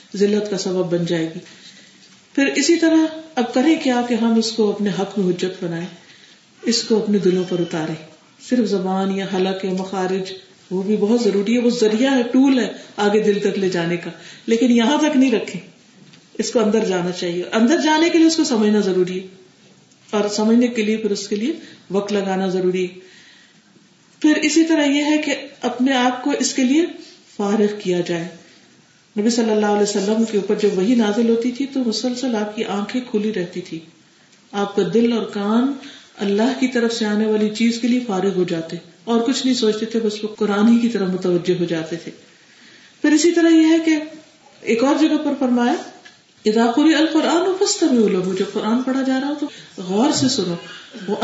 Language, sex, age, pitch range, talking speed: Urdu, female, 40-59, 190-260 Hz, 180 wpm